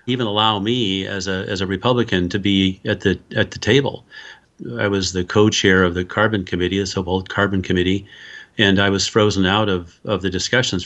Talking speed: 205 wpm